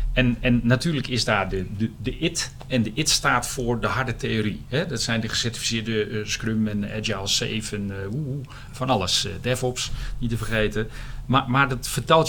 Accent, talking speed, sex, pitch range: Dutch, 190 wpm, male, 115-135 Hz